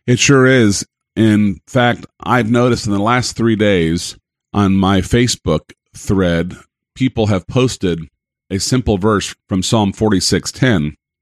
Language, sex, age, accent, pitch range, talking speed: English, male, 50-69, American, 105-130 Hz, 135 wpm